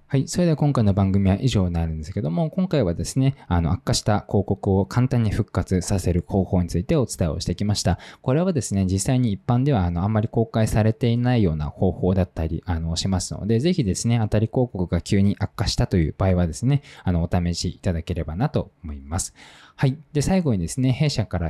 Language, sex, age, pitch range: Japanese, male, 20-39, 90-130 Hz